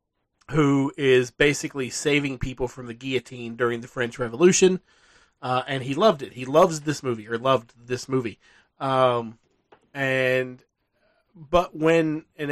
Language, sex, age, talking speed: English, male, 30-49, 145 wpm